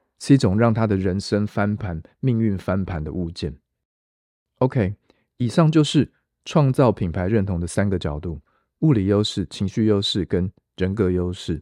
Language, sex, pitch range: Chinese, male, 90-115 Hz